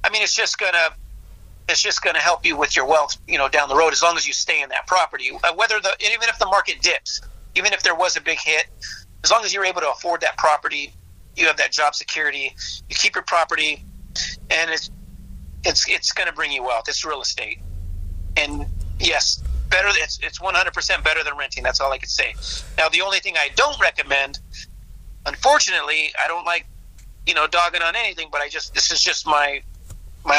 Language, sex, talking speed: English, male, 215 wpm